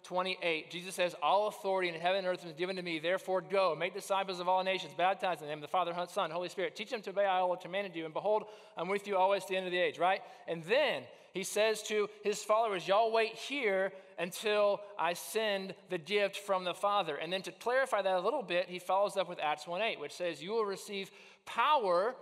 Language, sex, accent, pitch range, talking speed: English, male, American, 180-230 Hz, 245 wpm